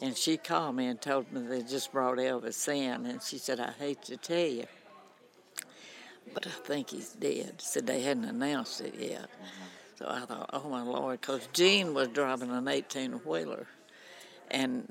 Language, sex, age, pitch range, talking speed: English, female, 60-79, 130-155 Hz, 175 wpm